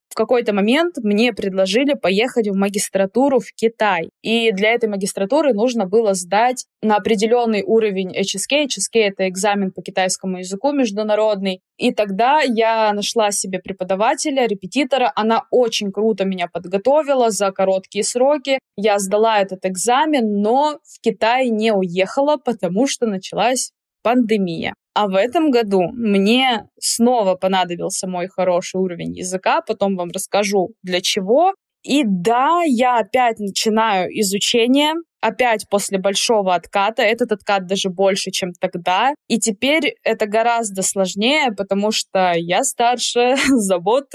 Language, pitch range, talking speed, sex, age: Russian, 195-245 Hz, 135 wpm, female, 20-39